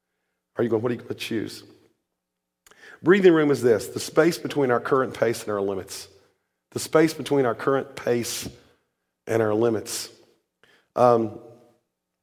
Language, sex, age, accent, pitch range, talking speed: English, male, 40-59, American, 115-145 Hz, 155 wpm